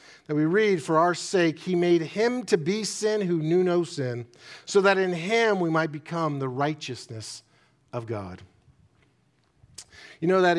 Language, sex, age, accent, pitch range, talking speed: English, male, 40-59, American, 130-185 Hz, 170 wpm